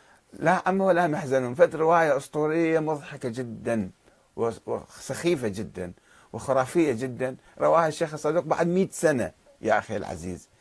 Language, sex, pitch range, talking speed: Arabic, male, 115-170 Hz, 125 wpm